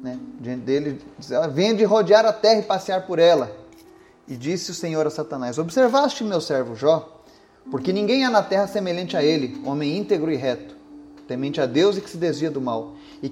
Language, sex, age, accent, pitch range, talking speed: Portuguese, male, 30-49, Brazilian, 140-215 Hz, 205 wpm